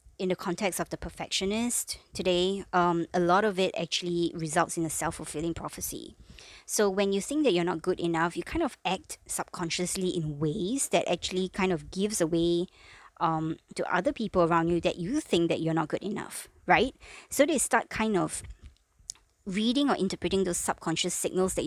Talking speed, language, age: 185 wpm, English, 20-39